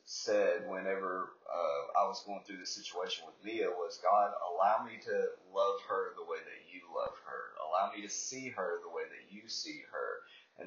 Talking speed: 200 wpm